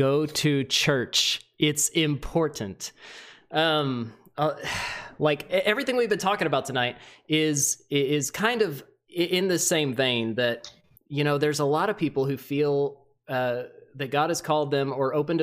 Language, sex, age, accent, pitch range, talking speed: English, male, 30-49, American, 125-150 Hz, 155 wpm